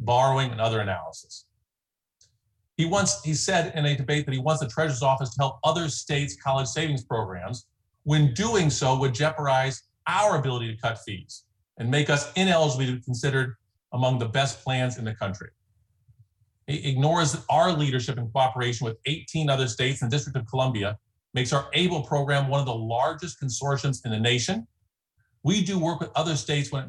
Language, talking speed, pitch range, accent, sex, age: English, 185 wpm, 110-145 Hz, American, male, 40-59